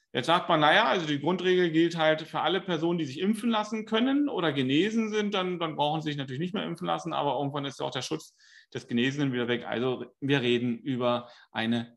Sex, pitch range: male, 125-160 Hz